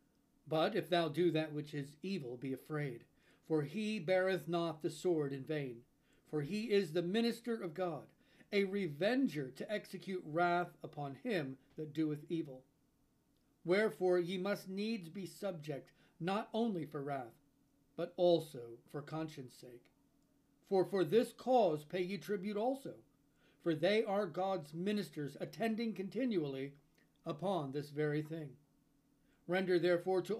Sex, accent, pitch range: male, American, 145-185 Hz